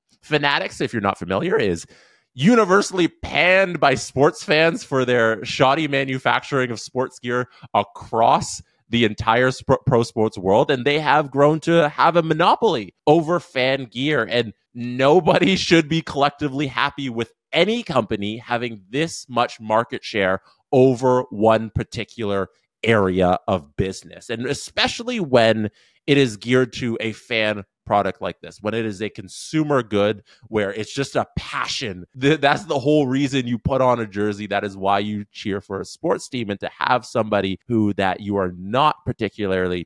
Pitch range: 105-140 Hz